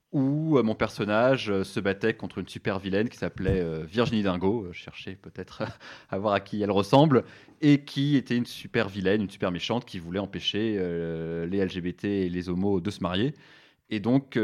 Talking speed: 185 wpm